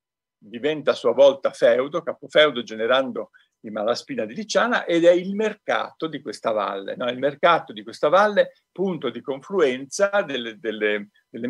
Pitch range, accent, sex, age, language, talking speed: 120-200 Hz, native, male, 50-69, Italian, 155 wpm